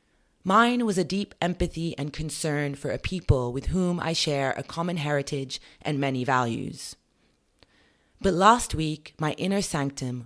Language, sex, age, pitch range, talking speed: English, female, 30-49, 135-180 Hz, 150 wpm